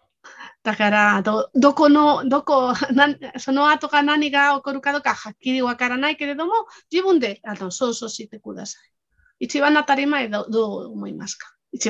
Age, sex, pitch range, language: 30-49, female, 220-285 Hz, Japanese